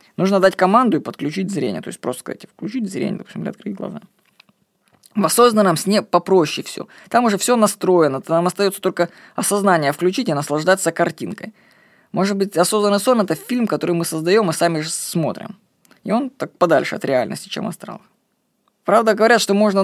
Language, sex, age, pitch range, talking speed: Russian, female, 20-39, 160-210 Hz, 180 wpm